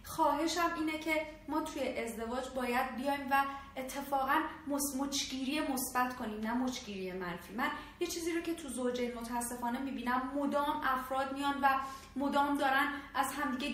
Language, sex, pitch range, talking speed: Persian, female, 240-290 Hz, 150 wpm